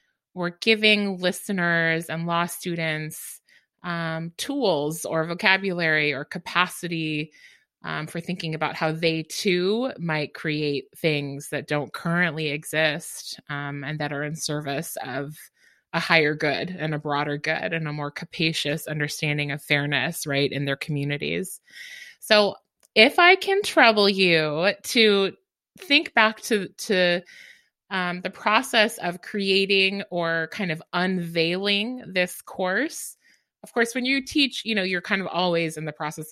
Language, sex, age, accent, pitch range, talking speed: English, female, 30-49, American, 160-205 Hz, 145 wpm